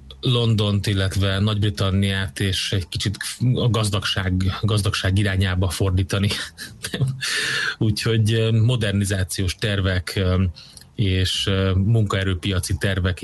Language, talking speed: Hungarian, 75 wpm